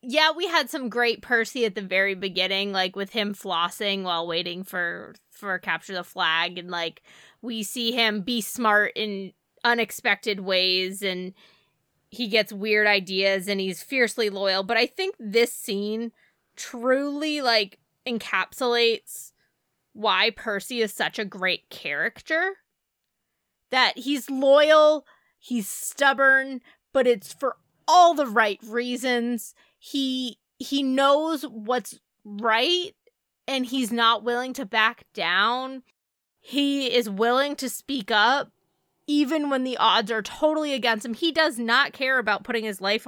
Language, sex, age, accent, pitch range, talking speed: English, female, 20-39, American, 200-265 Hz, 140 wpm